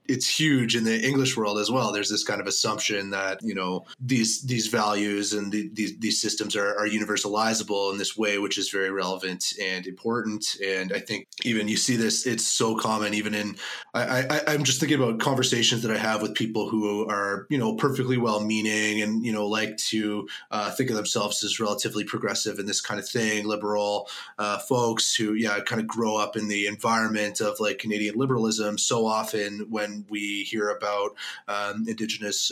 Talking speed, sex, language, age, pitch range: 195 wpm, male, English, 30-49, 105-120 Hz